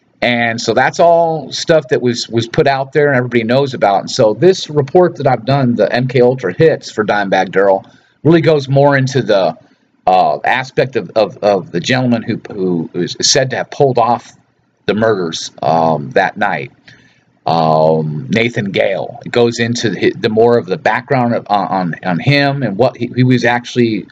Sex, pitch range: male, 120-150 Hz